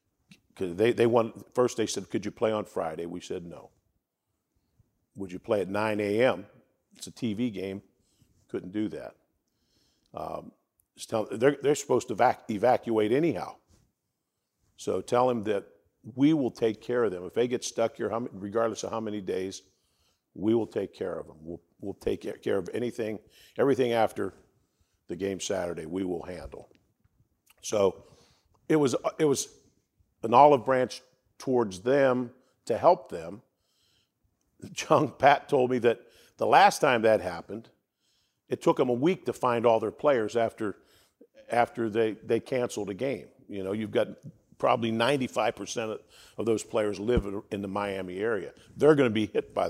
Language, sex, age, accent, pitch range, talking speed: English, male, 50-69, American, 100-120 Hz, 165 wpm